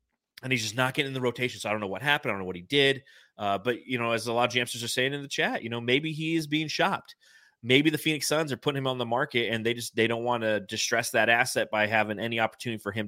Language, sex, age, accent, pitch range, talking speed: English, male, 30-49, American, 110-130 Hz, 305 wpm